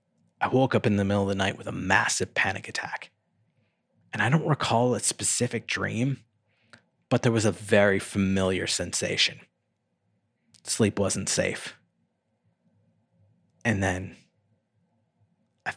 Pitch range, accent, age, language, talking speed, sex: 100-120 Hz, American, 30-49, English, 130 wpm, male